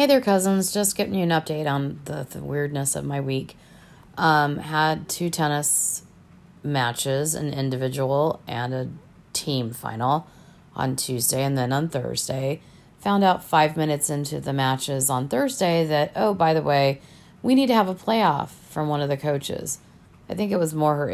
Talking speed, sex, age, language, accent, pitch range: 180 wpm, female, 30-49, English, American, 130-165 Hz